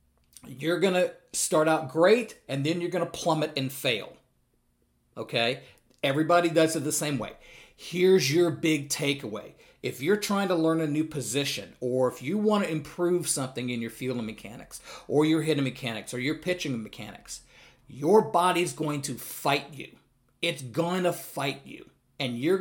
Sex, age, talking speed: male, 40-59, 175 wpm